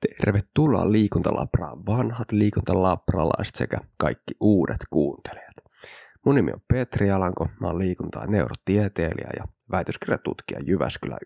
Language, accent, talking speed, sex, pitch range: Finnish, native, 105 wpm, male, 85-105 Hz